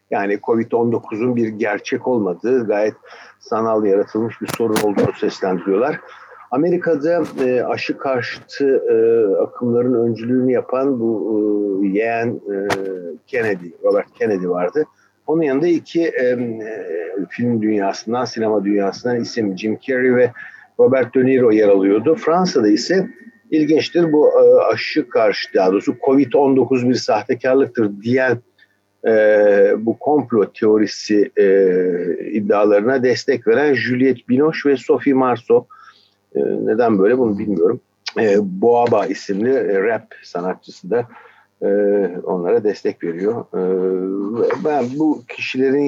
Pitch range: 110-160 Hz